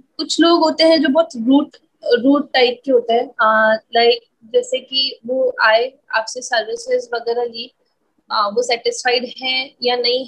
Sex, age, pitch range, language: female, 20-39, 235-285 Hz, Hindi